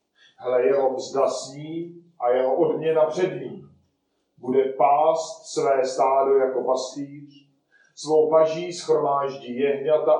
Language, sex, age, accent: Czech, male, 40-59, native